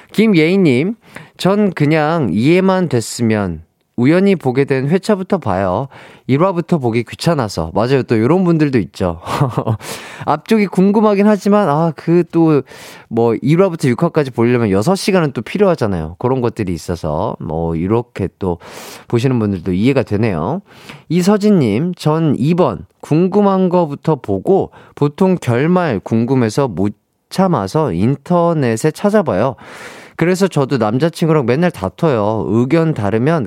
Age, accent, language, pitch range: 30-49, native, Korean, 115-175 Hz